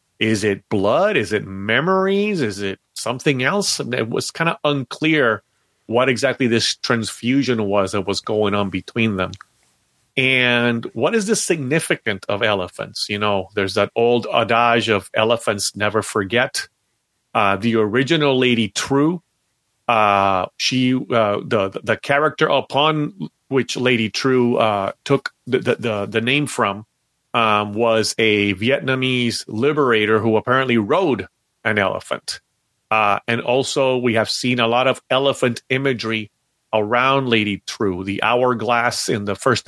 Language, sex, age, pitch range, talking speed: English, male, 30-49, 110-130 Hz, 140 wpm